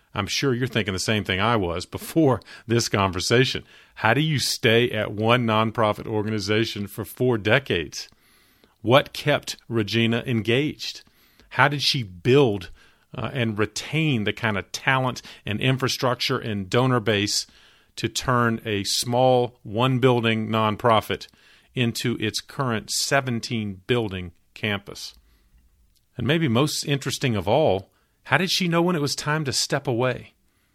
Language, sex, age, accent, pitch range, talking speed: English, male, 40-59, American, 100-130 Hz, 140 wpm